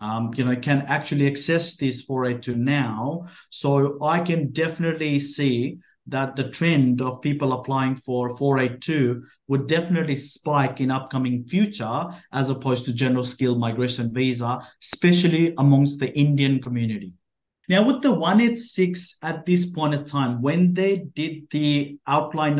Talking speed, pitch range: 155 wpm, 130-160 Hz